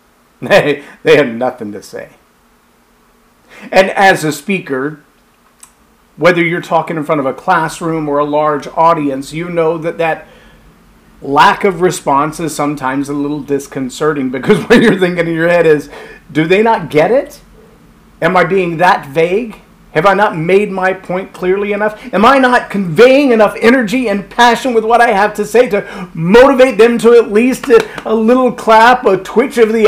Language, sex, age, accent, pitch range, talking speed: English, male, 40-59, American, 165-235 Hz, 175 wpm